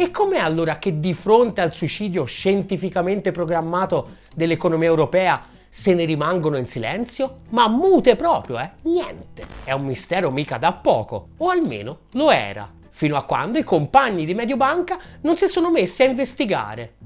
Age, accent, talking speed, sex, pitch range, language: 30-49, native, 160 wpm, male, 165-275 Hz, Italian